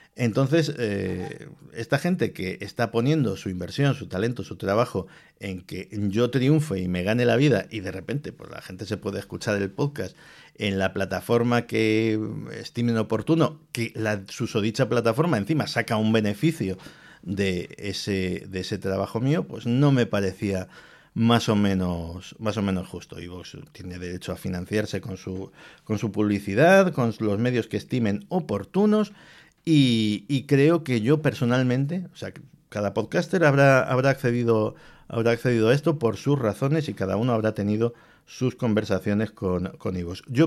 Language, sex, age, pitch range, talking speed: Spanish, male, 50-69, 100-135 Hz, 165 wpm